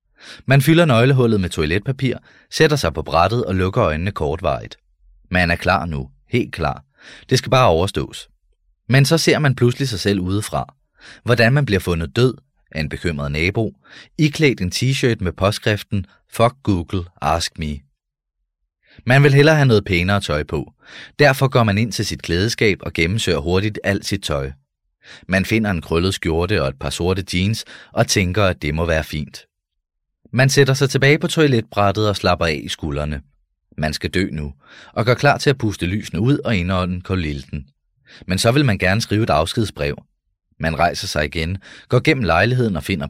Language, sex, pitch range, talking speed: Danish, male, 80-120 Hz, 180 wpm